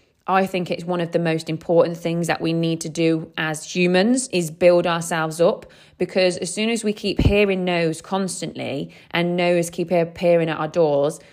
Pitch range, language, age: 160-210 Hz, English, 20-39